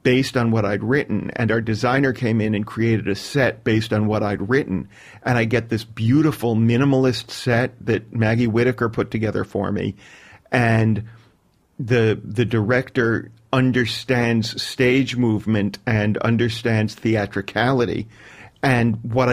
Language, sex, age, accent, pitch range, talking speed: English, male, 40-59, American, 105-120 Hz, 140 wpm